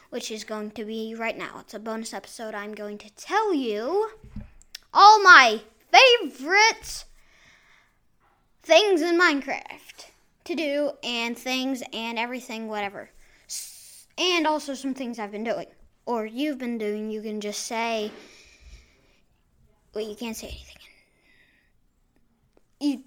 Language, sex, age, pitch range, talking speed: English, female, 10-29, 210-325 Hz, 130 wpm